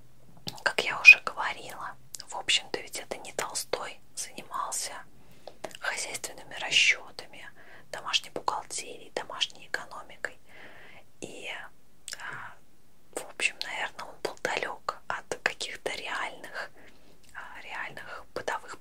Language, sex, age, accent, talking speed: Russian, female, 20-39, native, 95 wpm